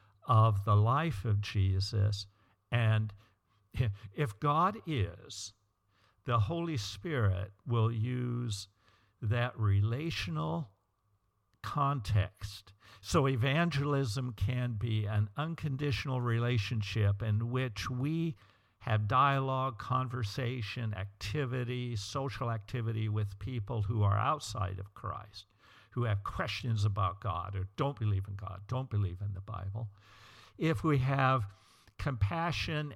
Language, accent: English, American